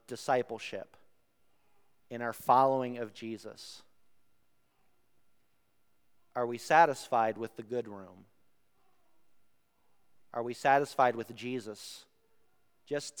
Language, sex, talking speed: English, male, 85 wpm